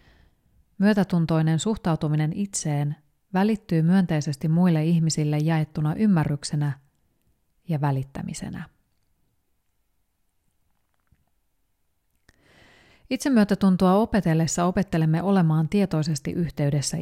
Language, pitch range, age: Finnish, 115-180 Hz, 30-49